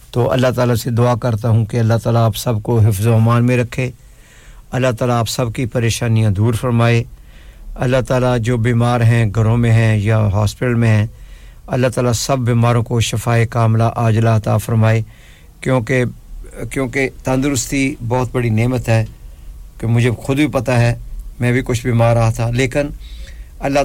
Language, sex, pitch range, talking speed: English, male, 115-125 Hz, 165 wpm